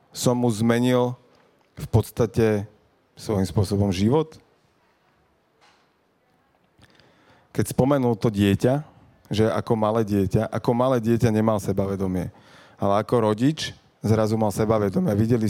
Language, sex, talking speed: Slovak, male, 110 wpm